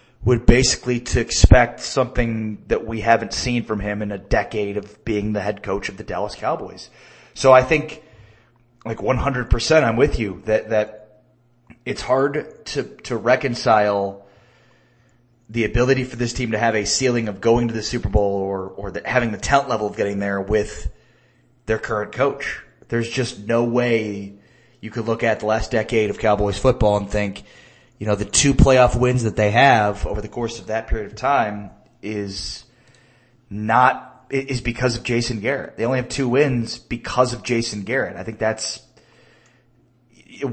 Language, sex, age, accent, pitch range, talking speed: English, male, 30-49, American, 105-125 Hz, 180 wpm